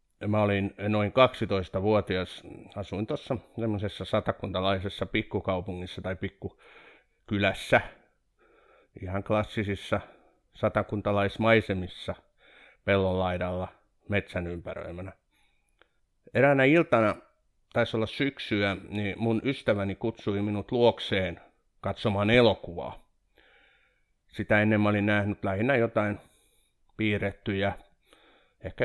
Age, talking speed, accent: 50-69, 80 wpm, native